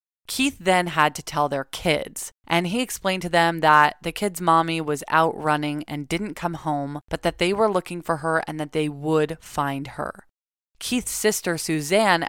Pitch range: 150-185 Hz